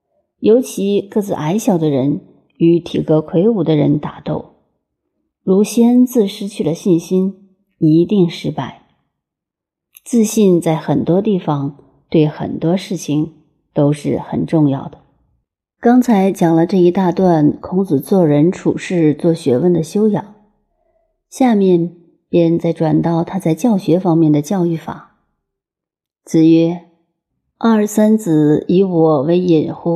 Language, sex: Chinese, female